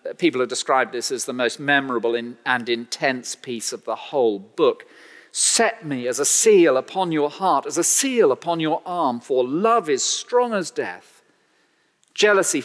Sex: male